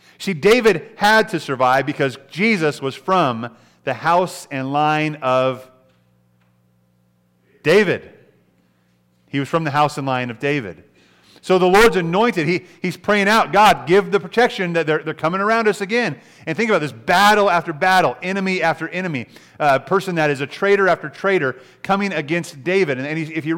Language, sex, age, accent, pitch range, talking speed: English, male, 40-59, American, 125-180 Hz, 175 wpm